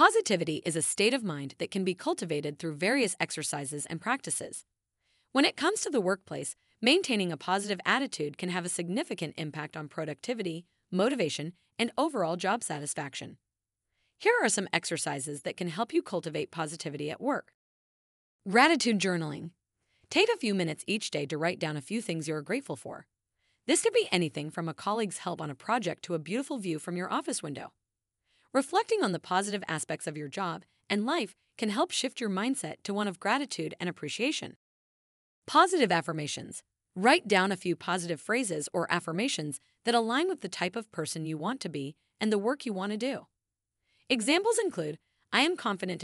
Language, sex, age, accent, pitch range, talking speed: English, female, 30-49, American, 155-235 Hz, 180 wpm